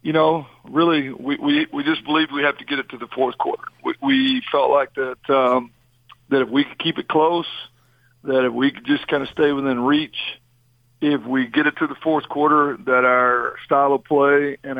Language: English